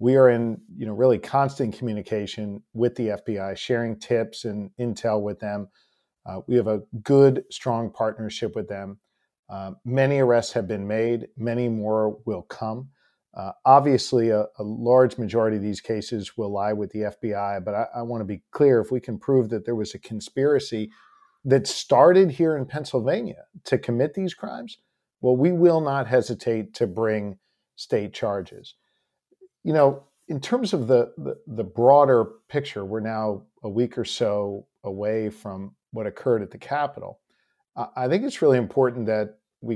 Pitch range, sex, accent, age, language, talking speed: 110-135 Hz, male, American, 50-69, English, 170 wpm